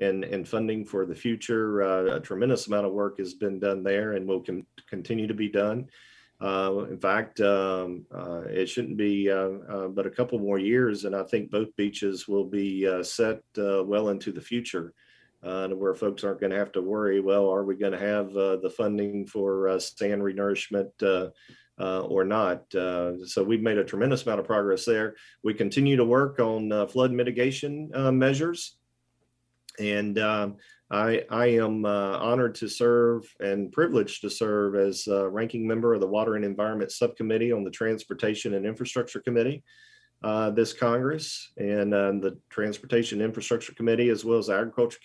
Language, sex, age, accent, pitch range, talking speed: English, male, 40-59, American, 100-115 Hz, 185 wpm